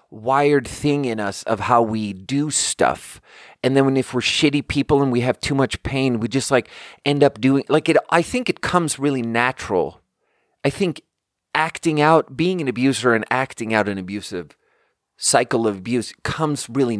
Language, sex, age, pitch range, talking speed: English, male, 30-49, 110-150 Hz, 185 wpm